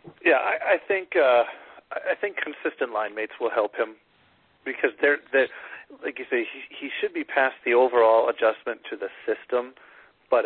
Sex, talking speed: male, 180 wpm